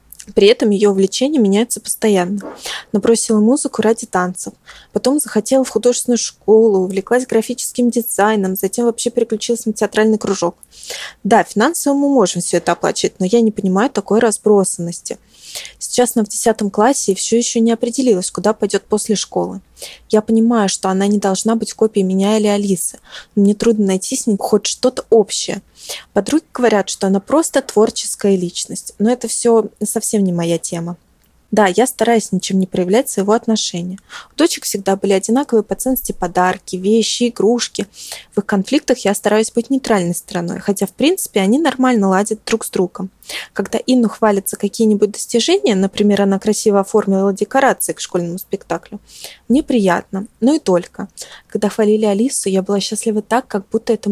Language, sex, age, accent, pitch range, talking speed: Russian, female, 20-39, native, 195-235 Hz, 165 wpm